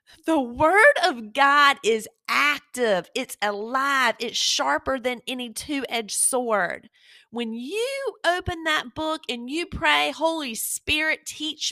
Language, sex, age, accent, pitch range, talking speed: English, female, 30-49, American, 215-310 Hz, 130 wpm